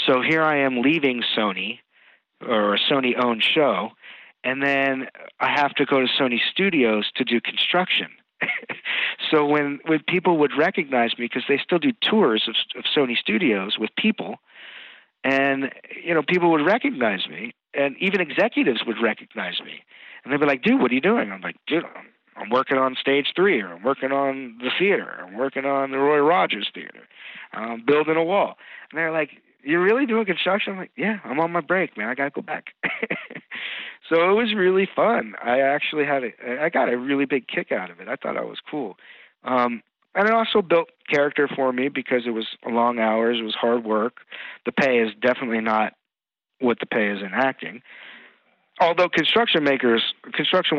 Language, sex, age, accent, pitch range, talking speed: English, male, 50-69, American, 120-165 Hz, 195 wpm